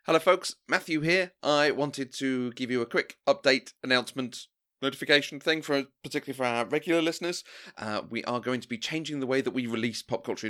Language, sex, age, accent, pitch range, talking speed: English, male, 30-49, British, 110-135 Hz, 200 wpm